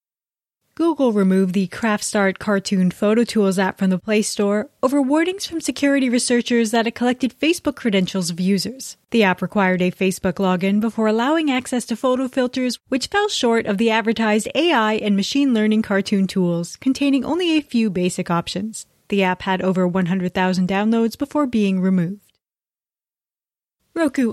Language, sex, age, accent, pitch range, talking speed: English, female, 20-39, American, 190-255 Hz, 160 wpm